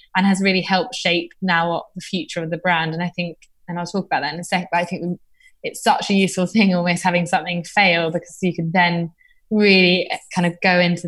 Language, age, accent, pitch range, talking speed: English, 20-39, British, 175-195 Hz, 240 wpm